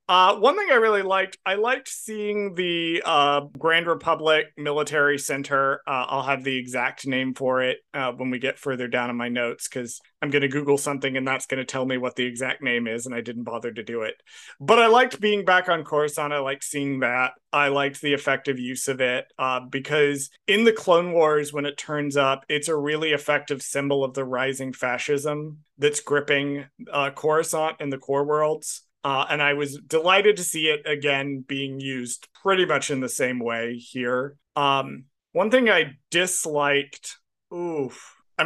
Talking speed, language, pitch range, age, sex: 195 wpm, English, 135-165 Hz, 30-49, male